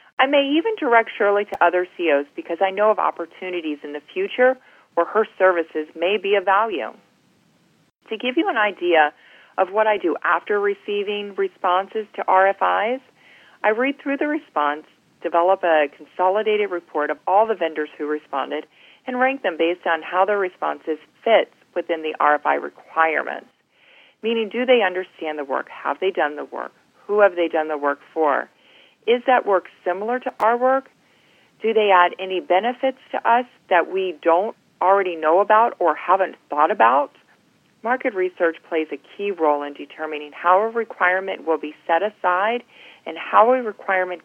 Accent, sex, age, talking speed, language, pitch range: American, female, 40-59, 170 wpm, English, 160-225 Hz